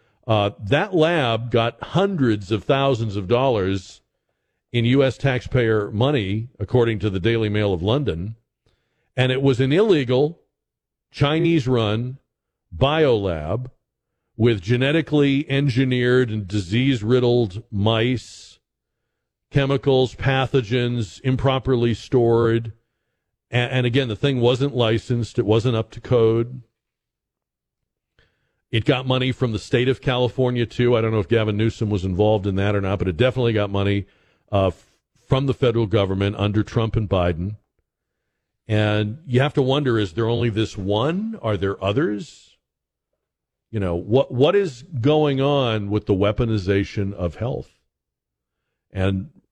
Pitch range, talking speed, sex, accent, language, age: 105-130 Hz, 135 wpm, male, American, English, 50-69